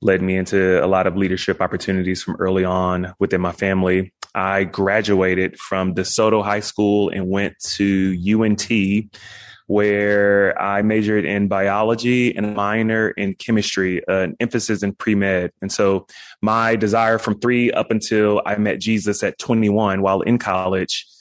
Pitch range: 95-105 Hz